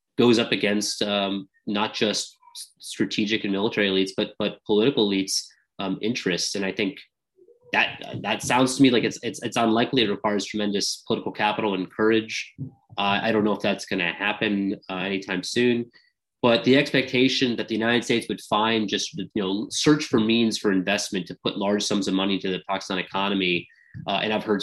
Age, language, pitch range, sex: 20-39, English, 95-120 Hz, male